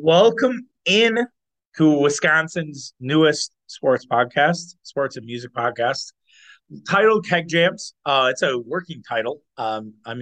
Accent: American